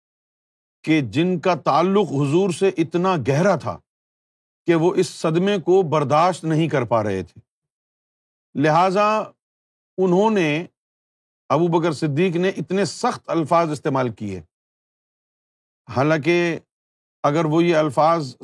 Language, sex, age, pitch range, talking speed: Urdu, male, 50-69, 150-190 Hz, 120 wpm